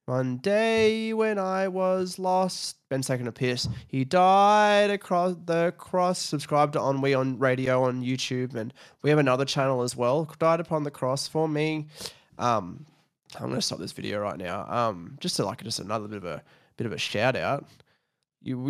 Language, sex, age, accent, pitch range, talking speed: English, male, 20-39, Australian, 120-155 Hz, 185 wpm